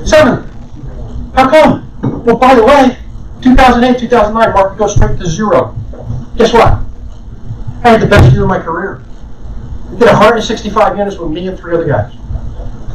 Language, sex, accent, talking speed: English, male, American, 160 wpm